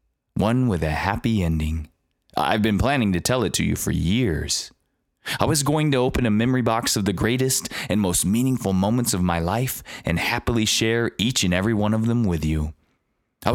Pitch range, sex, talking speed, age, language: 85-115 Hz, male, 200 wpm, 20-39, English